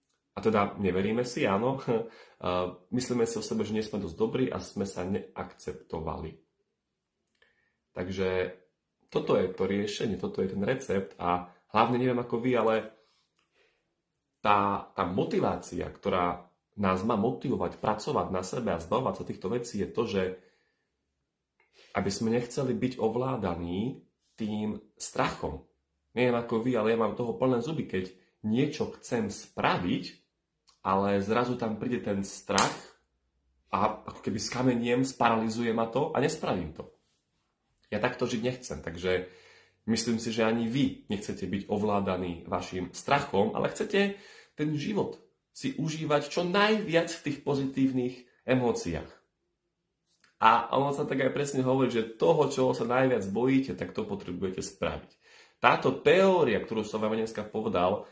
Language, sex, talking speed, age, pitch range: Slovak, male, 140 wpm, 30-49, 95-125 Hz